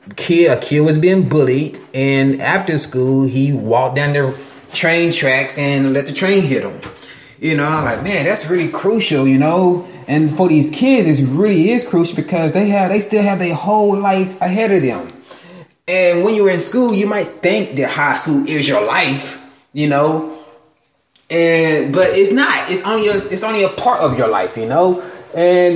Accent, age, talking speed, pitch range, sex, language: American, 20-39, 200 wpm, 150-195 Hz, male, English